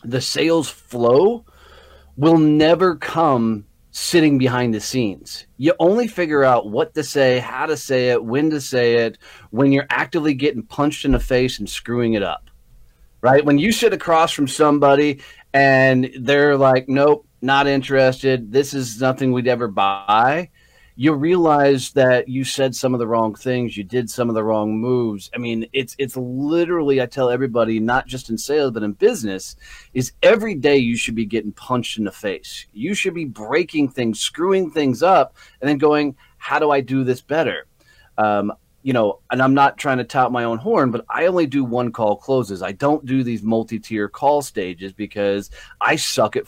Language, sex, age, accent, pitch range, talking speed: English, male, 30-49, American, 115-145 Hz, 190 wpm